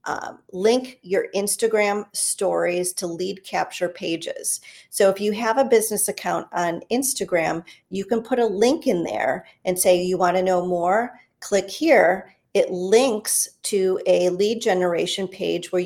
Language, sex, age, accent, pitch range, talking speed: English, female, 40-59, American, 180-220 Hz, 160 wpm